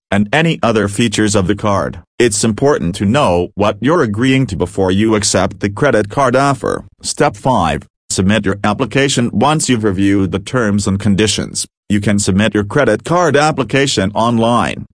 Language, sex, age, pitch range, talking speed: English, male, 40-59, 100-120 Hz, 170 wpm